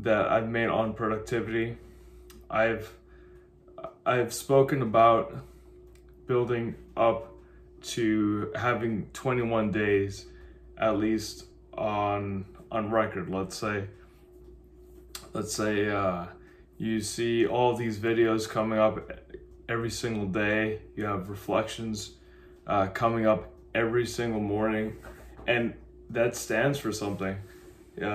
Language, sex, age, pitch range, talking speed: English, male, 20-39, 95-115 Hz, 105 wpm